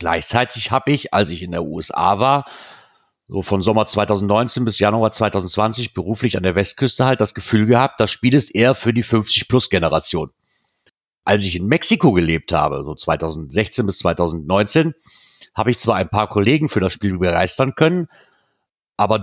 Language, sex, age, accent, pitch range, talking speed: German, male, 40-59, German, 100-130 Hz, 165 wpm